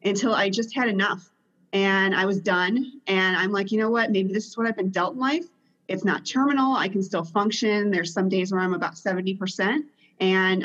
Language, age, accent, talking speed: English, 30-49, American, 220 wpm